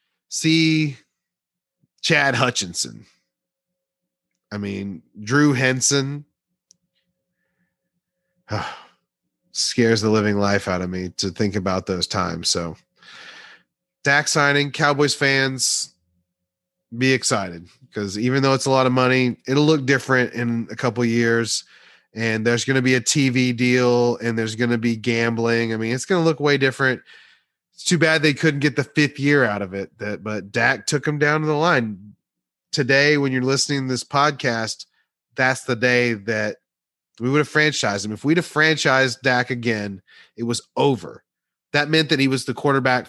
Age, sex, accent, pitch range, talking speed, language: 30-49, male, American, 115-145 Hz, 160 wpm, English